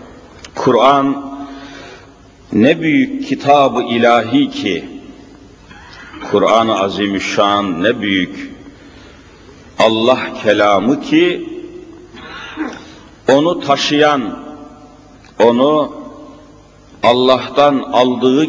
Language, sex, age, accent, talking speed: Turkish, male, 50-69, native, 60 wpm